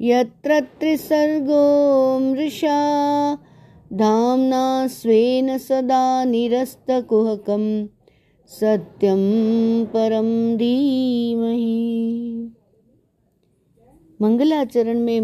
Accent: native